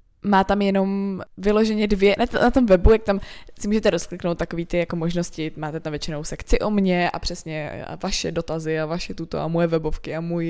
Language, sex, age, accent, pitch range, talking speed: Czech, female, 20-39, native, 170-210 Hz, 205 wpm